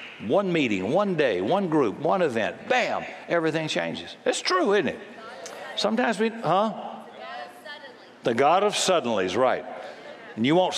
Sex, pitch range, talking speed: male, 150-195 Hz, 150 wpm